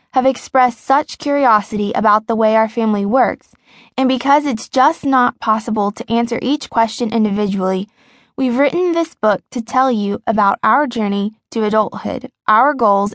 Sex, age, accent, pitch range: female, 20-39, American, 215-260 Hz